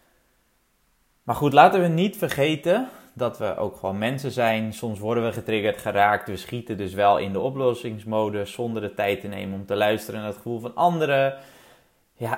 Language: Dutch